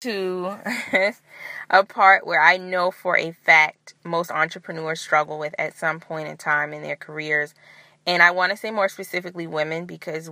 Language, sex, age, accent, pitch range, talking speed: English, female, 20-39, American, 155-170 Hz, 175 wpm